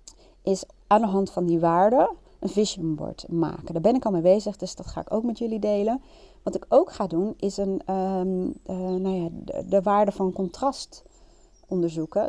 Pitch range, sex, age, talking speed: 170-220 Hz, female, 30-49, 205 wpm